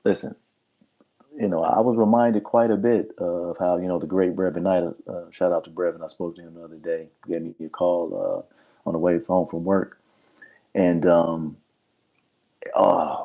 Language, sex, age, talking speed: English, male, 30-49, 200 wpm